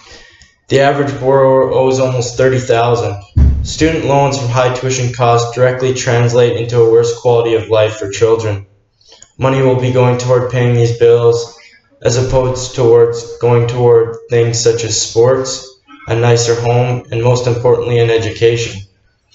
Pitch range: 115-130 Hz